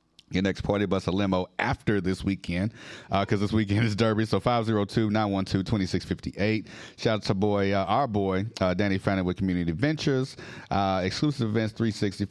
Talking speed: 175 wpm